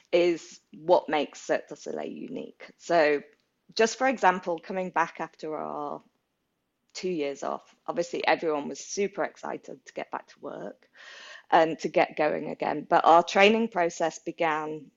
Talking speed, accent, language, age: 150 wpm, British, English, 20-39